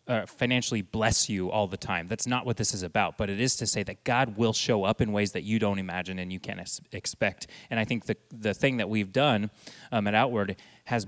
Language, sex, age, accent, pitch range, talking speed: English, male, 30-49, American, 100-125 Hz, 255 wpm